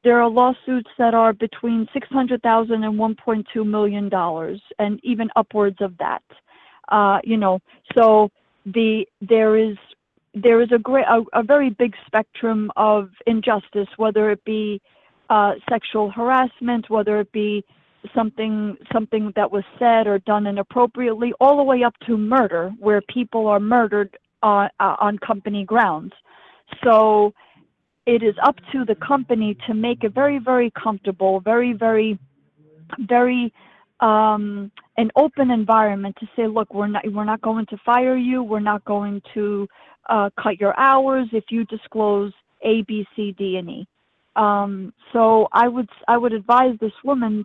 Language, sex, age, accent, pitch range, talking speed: English, female, 40-59, American, 210-240 Hz, 155 wpm